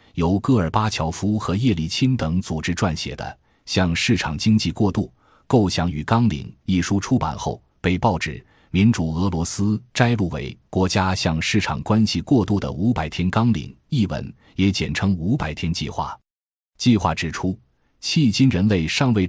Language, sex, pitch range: Chinese, male, 80-110 Hz